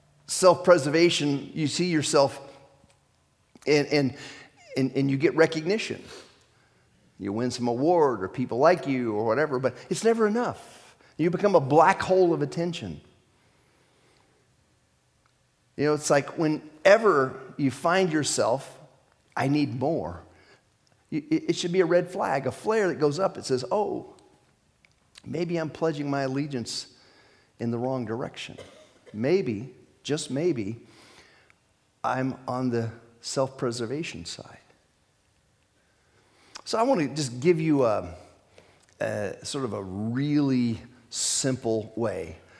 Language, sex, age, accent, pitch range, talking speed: English, male, 40-59, American, 120-160 Hz, 125 wpm